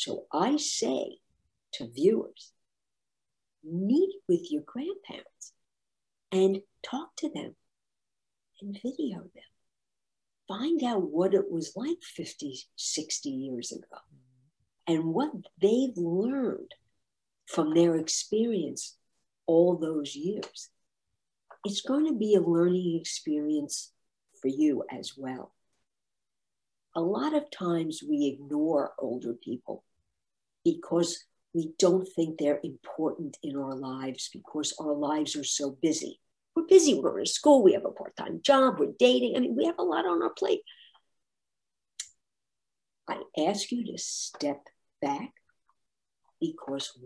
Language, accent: German, American